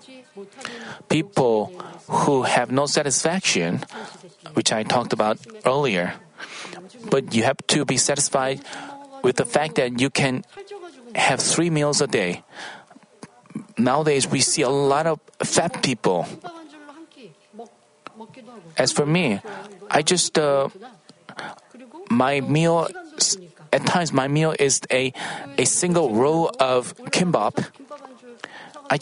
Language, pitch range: Korean, 150-230 Hz